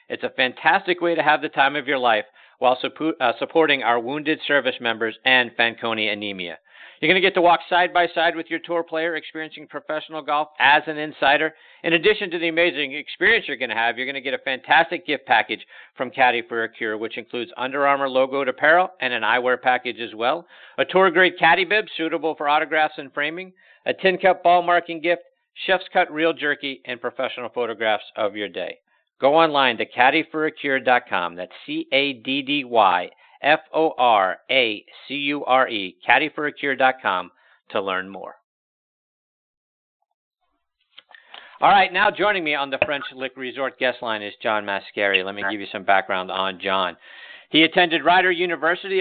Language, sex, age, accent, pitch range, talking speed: English, male, 50-69, American, 120-165 Hz, 165 wpm